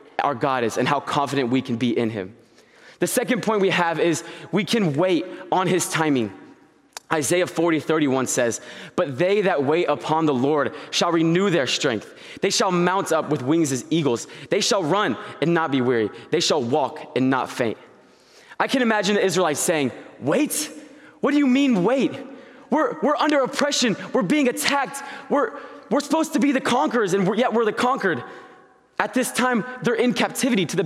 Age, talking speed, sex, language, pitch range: 20-39, 190 wpm, male, English, 170-235 Hz